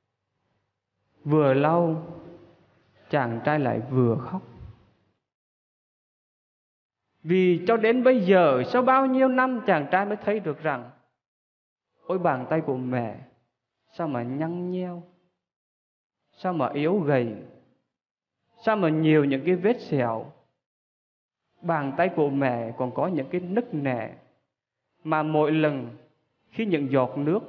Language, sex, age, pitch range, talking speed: Vietnamese, male, 20-39, 120-170 Hz, 130 wpm